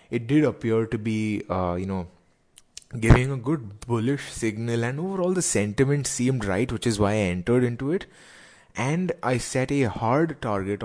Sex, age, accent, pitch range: male, 20-39, Indian, 100-130 Hz